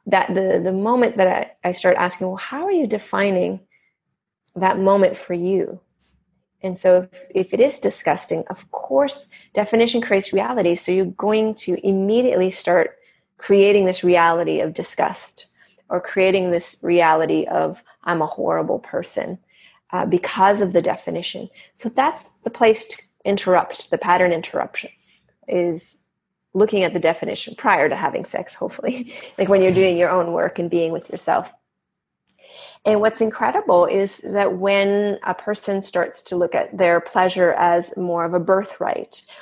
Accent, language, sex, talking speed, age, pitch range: American, English, female, 160 wpm, 30-49, 180-220 Hz